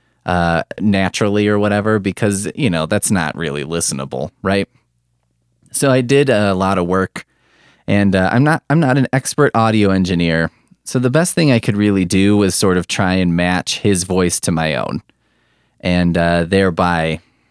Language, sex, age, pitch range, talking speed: English, male, 20-39, 85-115 Hz, 175 wpm